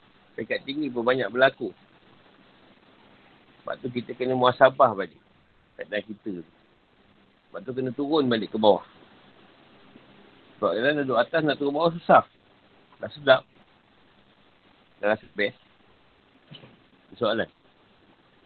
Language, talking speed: Malay, 110 wpm